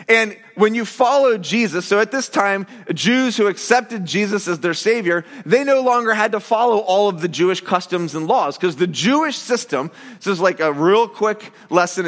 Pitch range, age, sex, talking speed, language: 175-235 Hz, 30-49, male, 200 wpm, English